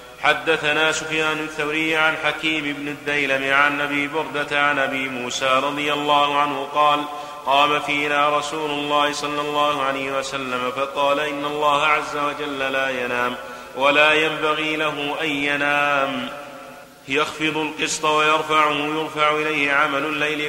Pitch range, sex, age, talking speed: 135-150 Hz, male, 30-49, 130 wpm